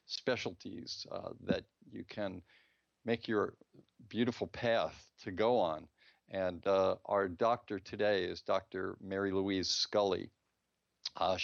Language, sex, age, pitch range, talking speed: English, male, 50-69, 95-110 Hz, 120 wpm